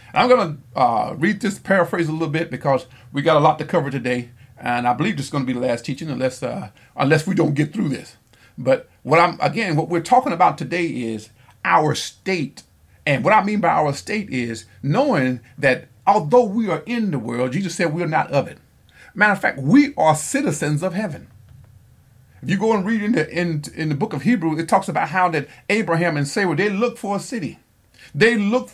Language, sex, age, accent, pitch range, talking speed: English, male, 40-59, American, 140-205 Hz, 225 wpm